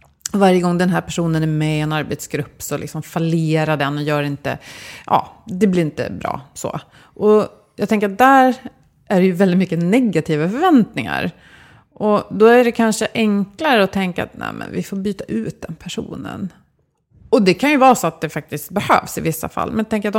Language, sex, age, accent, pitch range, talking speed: Swedish, female, 30-49, native, 165-225 Hz, 200 wpm